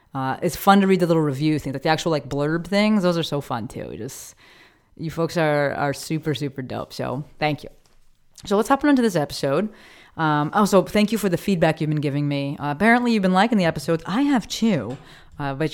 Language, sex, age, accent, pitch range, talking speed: English, female, 30-49, American, 145-195 Hz, 240 wpm